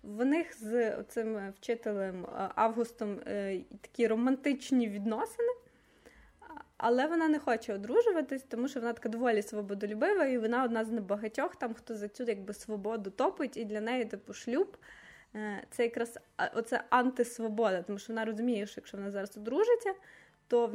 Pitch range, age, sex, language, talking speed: 210-255 Hz, 20-39, female, Ukrainian, 160 wpm